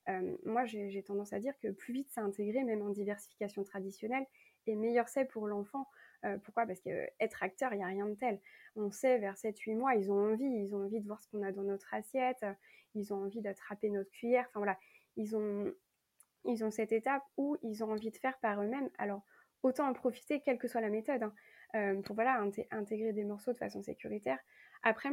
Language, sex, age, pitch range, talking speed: French, female, 20-39, 205-245 Hz, 225 wpm